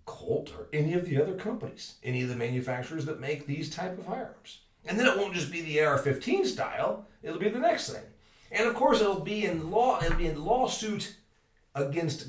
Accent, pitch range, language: American, 120-170 Hz, English